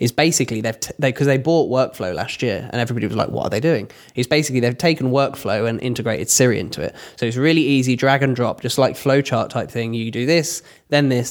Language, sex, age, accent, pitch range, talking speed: English, male, 10-29, British, 120-160 Hz, 240 wpm